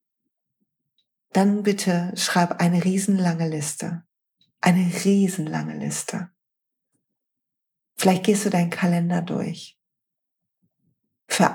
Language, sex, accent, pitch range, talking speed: German, female, German, 165-190 Hz, 85 wpm